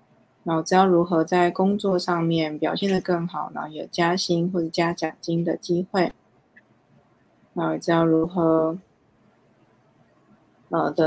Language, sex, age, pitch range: Chinese, female, 20-39, 165-185 Hz